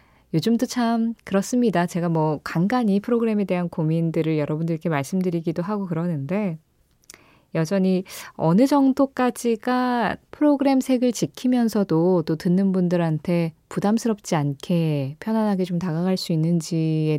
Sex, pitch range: female, 160-205 Hz